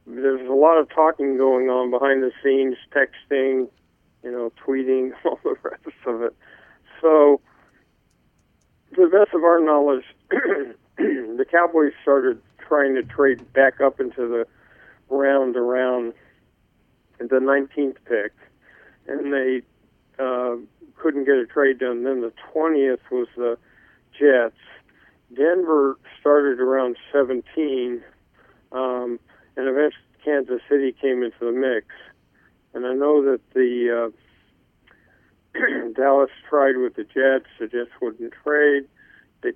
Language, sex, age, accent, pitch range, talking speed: English, male, 50-69, American, 125-145 Hz, 125 wpm